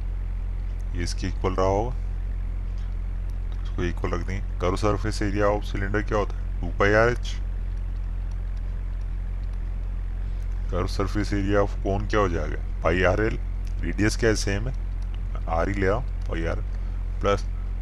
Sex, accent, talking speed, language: male, native, 130 wpm, Hindi